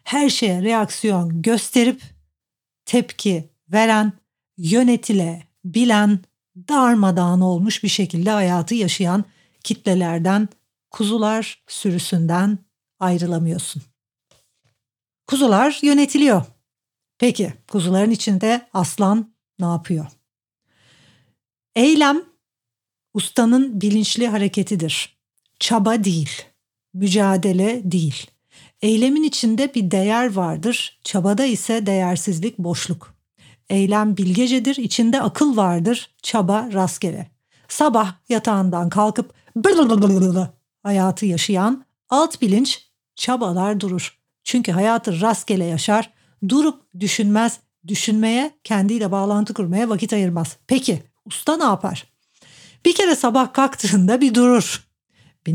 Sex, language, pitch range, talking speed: female, Turkish, 175-230 Hz, 90 wpm